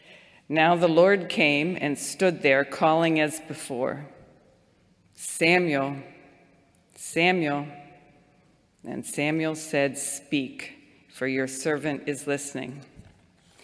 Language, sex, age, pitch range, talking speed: English, female, 50-69, 145-170 Hz, 90 wpm